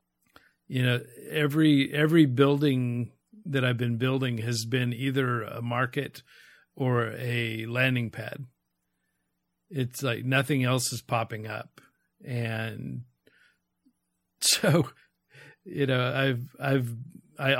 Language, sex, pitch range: English, male, 120-140 Hz